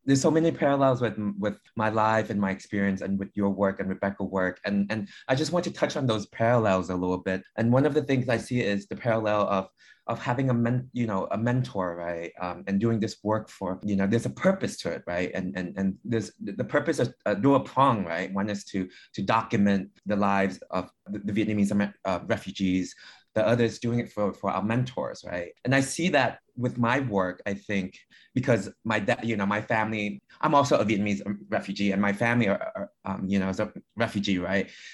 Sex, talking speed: male, 225 wpm